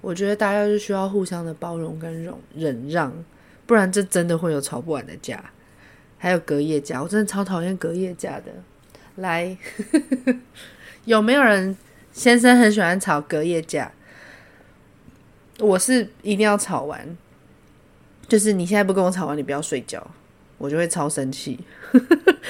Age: 20-39